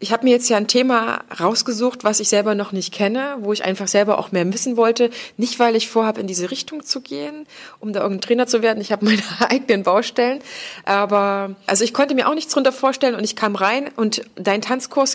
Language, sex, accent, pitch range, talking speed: German, female, German, 190-240 Hz, 230 wpm